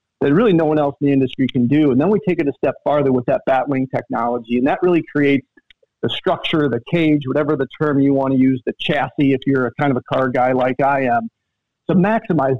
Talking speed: 250 wpm